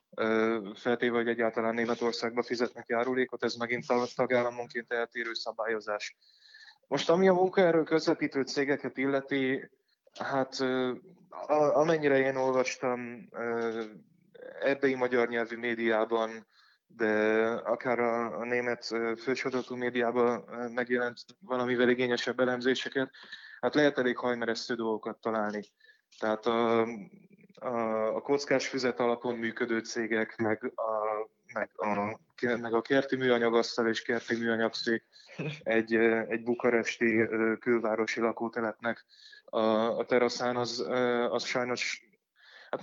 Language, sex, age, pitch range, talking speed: Hungarian, male, 20-39, 115-130 Hz, 105 wpm